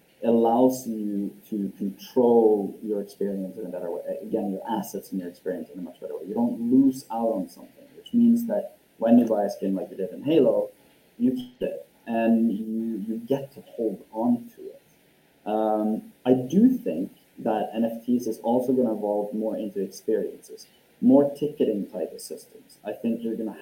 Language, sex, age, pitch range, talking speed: English, male, 30-49, 105-140 Hz, 195 wpm